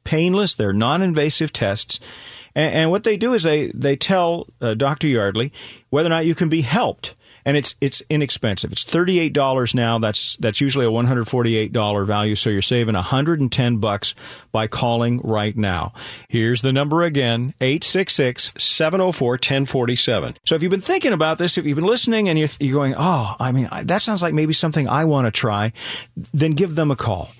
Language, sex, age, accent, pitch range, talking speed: English, male, 40-59, American, 115-160 Hz, 185 wpm